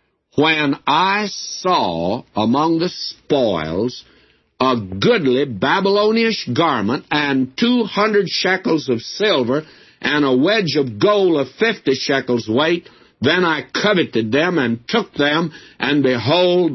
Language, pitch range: English, 110-170 Hz